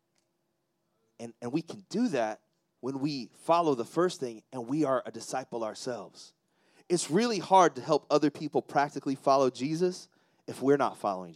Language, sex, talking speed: English, male, 170 wpm